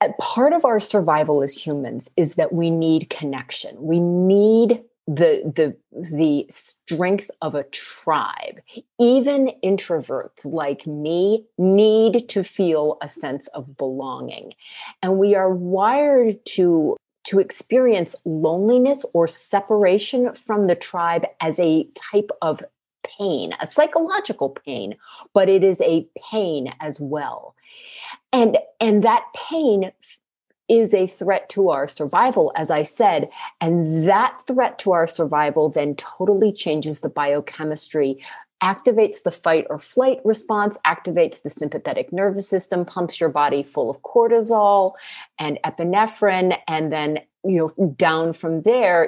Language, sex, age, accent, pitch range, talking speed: English, female, 40-59, American, 155-215 Hz, 135 wpm